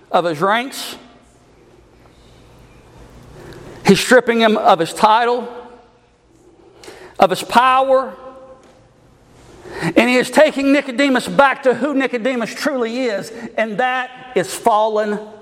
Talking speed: 105 wpm